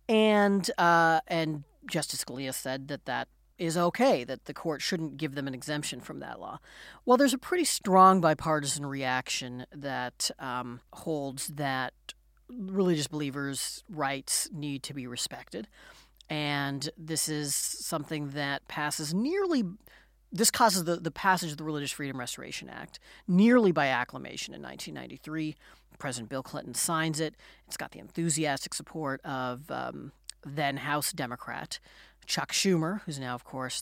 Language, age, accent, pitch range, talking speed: English, 40-59, American, 135-175 Hz, 145 wpm